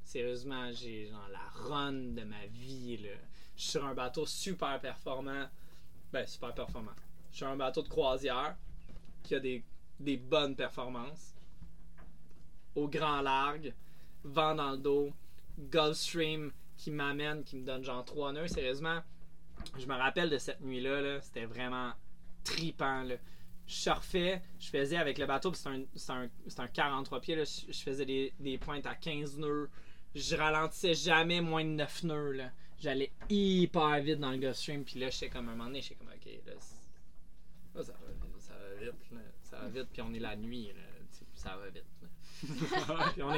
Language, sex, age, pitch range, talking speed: French, male, 20-39, 120-155 Hz, 180 wpm